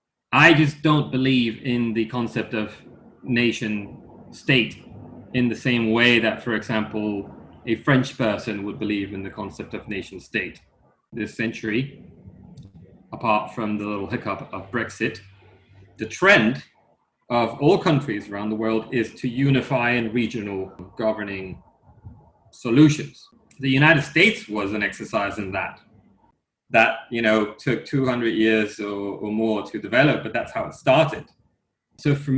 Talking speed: 140 wpm